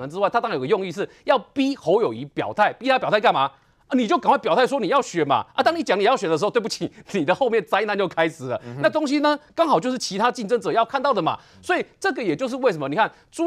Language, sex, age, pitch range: Chinese, male, 30-49, 175-290 Hz